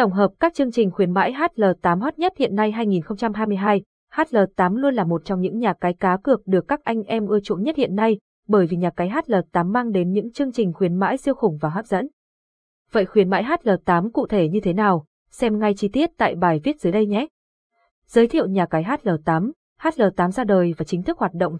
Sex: female